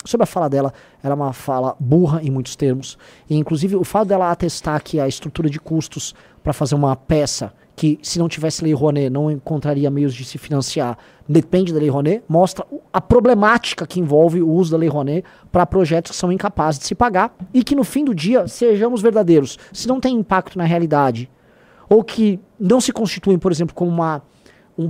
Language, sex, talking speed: Portuguese, male, 205 wpm